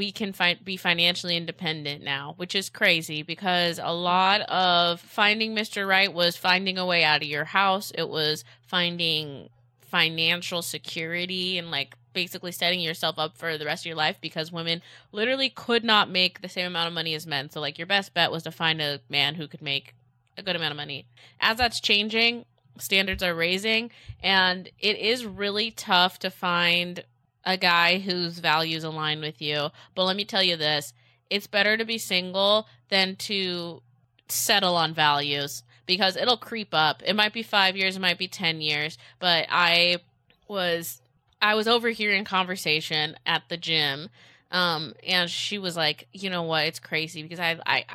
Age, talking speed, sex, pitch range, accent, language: 20-39, 185 wpm, female, 155-190 Hz, American, English